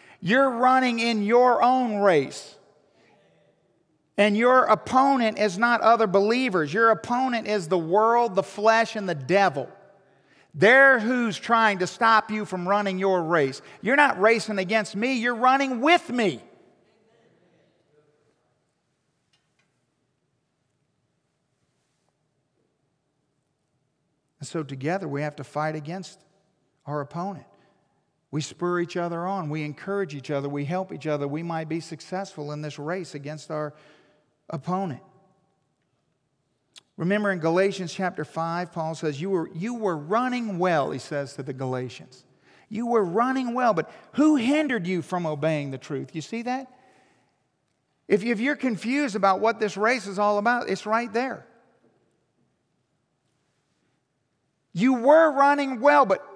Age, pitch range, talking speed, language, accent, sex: 50-69, 150-230 Hz, 135 wpm, English, American, male